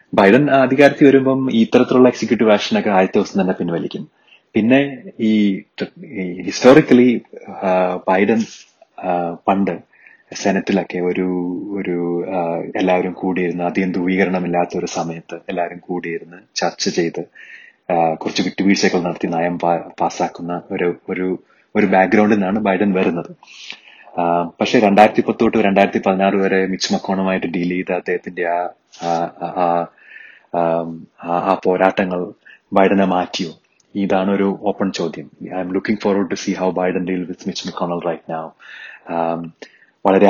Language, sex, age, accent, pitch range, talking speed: Malayalam, male, 30-49, native, 90-100 Hz, 110 wpm